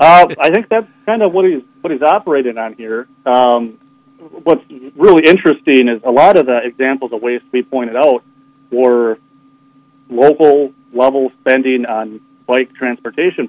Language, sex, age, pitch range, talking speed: English, male, 30-49, 120-135 Hz, 155 wpm